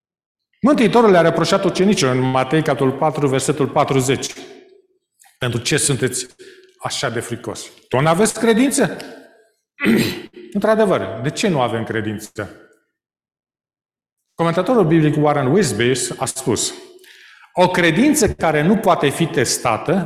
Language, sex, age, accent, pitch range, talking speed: Romanian, male, 40-59, native, 140-220 Hz, 115 wpm